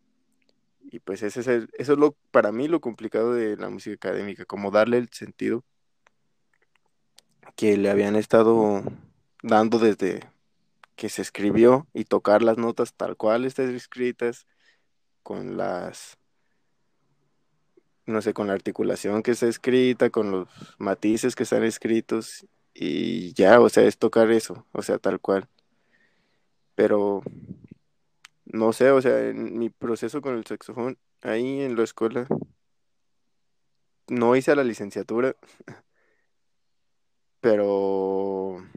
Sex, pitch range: male, 105-120 Hz